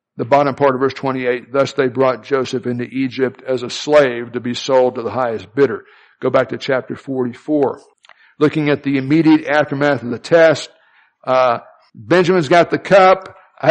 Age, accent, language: 60-79, American, English